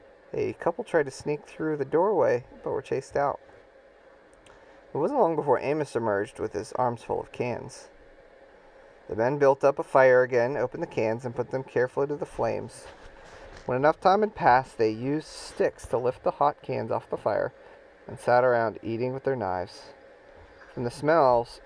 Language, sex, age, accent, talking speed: English, male, 30-49, American, 185 wpm